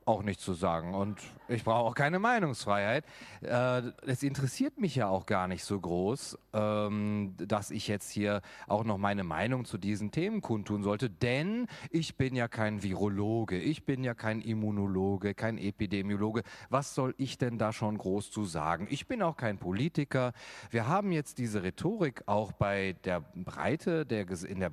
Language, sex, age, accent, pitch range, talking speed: German, male, 40-59, German, 100-130 Hz, 175 wpm